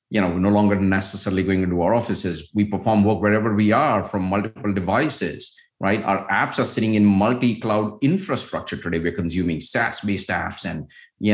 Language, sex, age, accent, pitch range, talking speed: English, male, 50-69, Indian, 95-115 Hz, 180 wpm